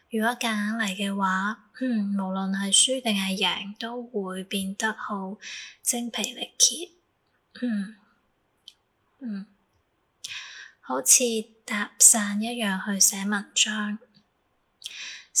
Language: Chinese